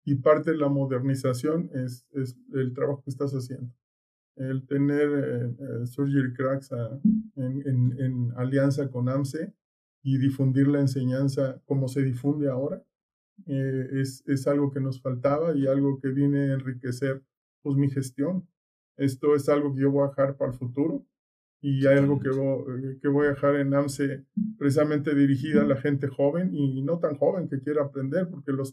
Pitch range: 130-140 Hz